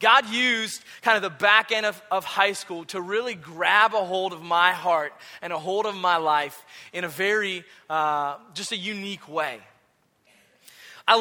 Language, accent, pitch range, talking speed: English, American, 175-220 Hz, 180 wpm